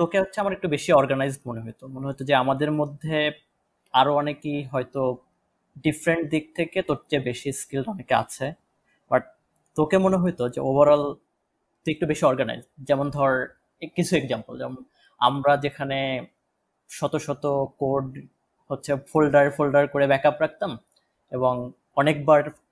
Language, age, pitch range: Bengali, 20-39, 130-160 Hz